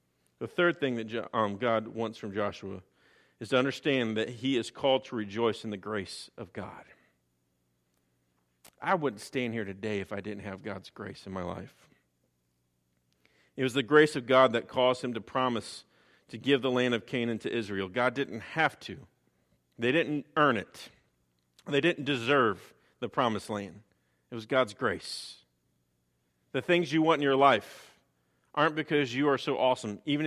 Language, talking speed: English, 170 wpm